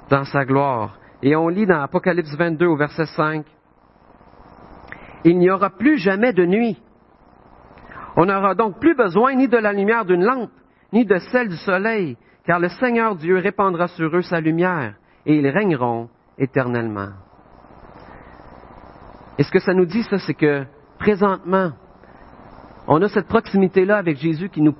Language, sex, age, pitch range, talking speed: French, male, 50-69, 120-180 Hz, 160 wpm